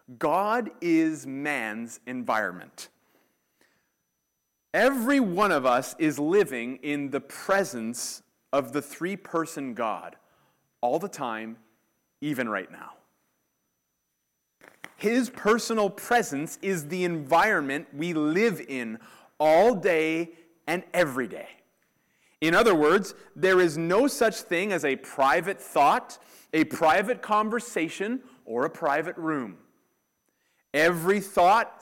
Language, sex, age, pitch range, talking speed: English, male, 30-49, 145-210 Hz, 110 wpm